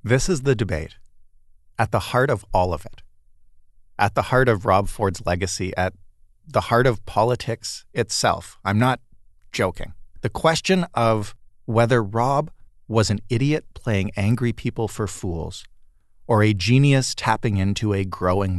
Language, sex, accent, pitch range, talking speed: English, male, American, 95-120 Hz, 150 wpm